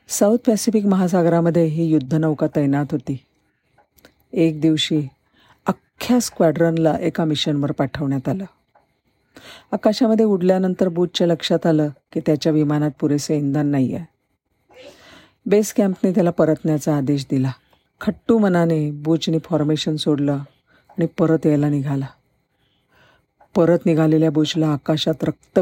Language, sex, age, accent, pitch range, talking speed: Marathi, female, 50-69, native, 150-185 Hz, 105 wpm